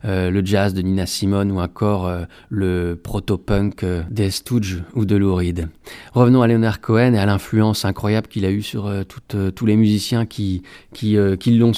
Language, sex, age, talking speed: English, male, 30-49, 210 wpm